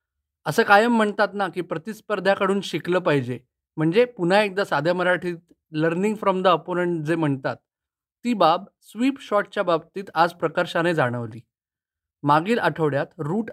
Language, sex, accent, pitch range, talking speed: Marathi, male, native, 165-220 Hz, 135 wpm